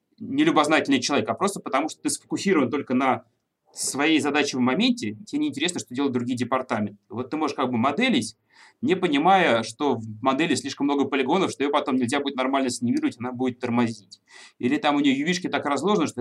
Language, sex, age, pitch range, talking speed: Russian, male, 20-39, 125-170 Hz, 200 wpm